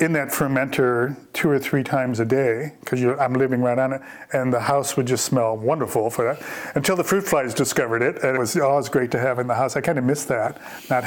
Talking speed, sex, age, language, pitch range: 255 wpm, male, 40-59, English, 125-150 Hz